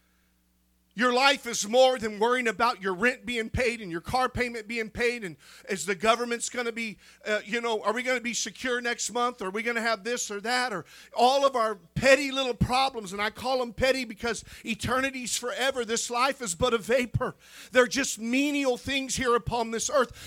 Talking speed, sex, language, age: 215 wpm, male, English, 50-69